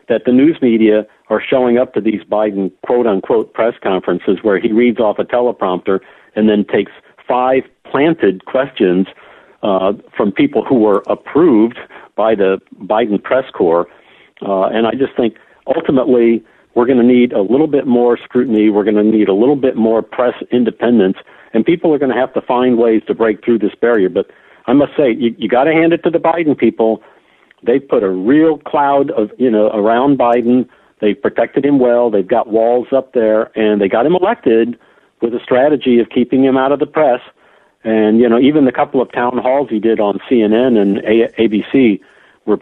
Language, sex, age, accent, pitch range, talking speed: English, male, 60-79, American, 110-130 Hz, 195 wpm